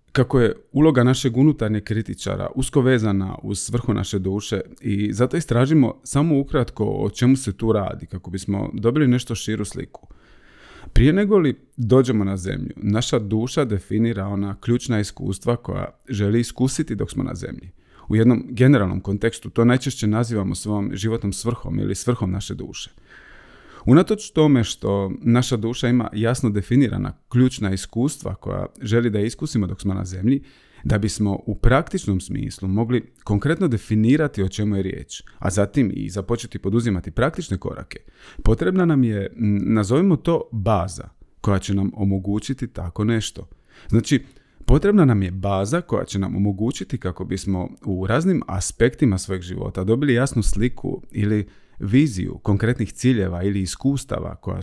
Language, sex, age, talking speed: Croatian, male, 30-49, 150 wpm